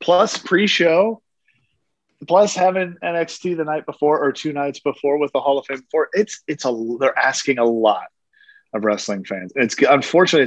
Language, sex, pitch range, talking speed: English, male, 115-155 Hz, 170 wpm